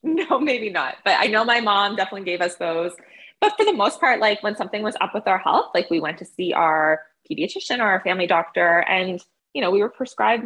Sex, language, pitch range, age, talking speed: female, English, 155-210 Hz, 20-39, 240 wpm